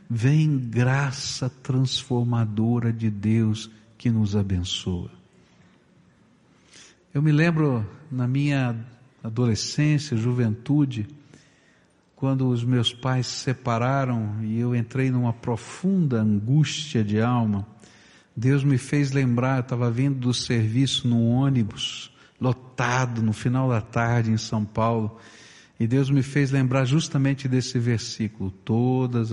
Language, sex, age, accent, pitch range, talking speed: Portuguese, male, 60-79, Brazilian, 115-140 Hz, 115 wpm